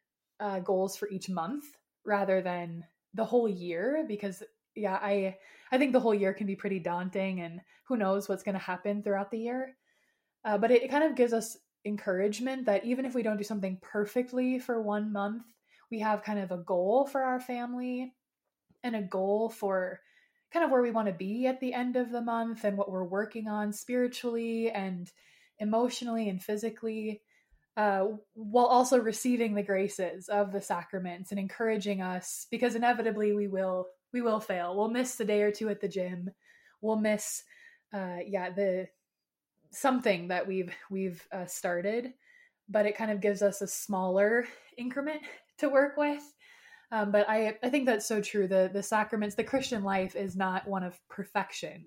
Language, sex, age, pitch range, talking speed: English, female, 20-39, 190-245 Hz, 185 wpm